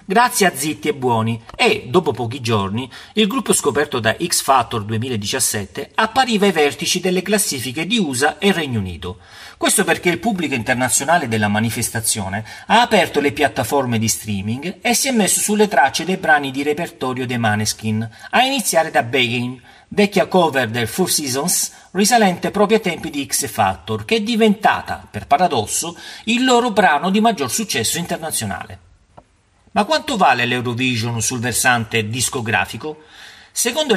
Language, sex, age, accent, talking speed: Italian, male, 40-59, native, 150 wpm